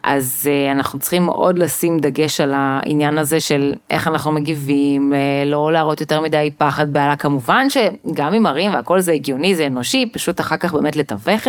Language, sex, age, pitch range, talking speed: Hebrew, female, 30-49, 150-200 Hz, 170 wpm